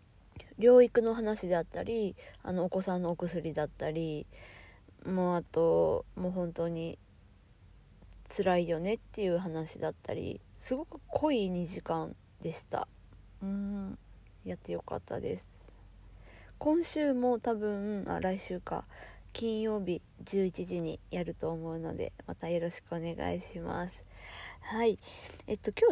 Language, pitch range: Japanese, 160-230 Hz